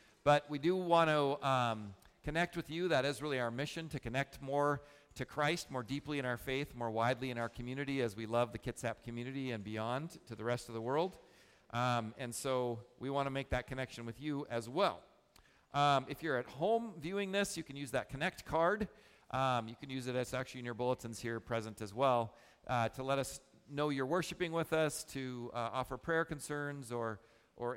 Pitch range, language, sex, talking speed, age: 120-150 Hz, English, male, 215 wpm, 50-69